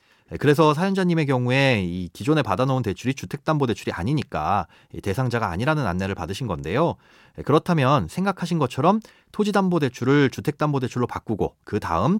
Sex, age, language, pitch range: male, 30-49, Korean, 110-160 Hz